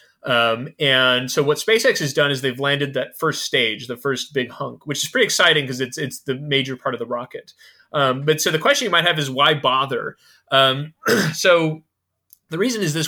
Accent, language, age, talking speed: American, English, 30-49, 215 wpm